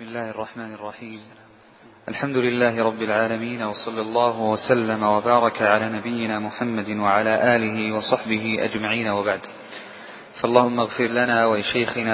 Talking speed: 120 wpm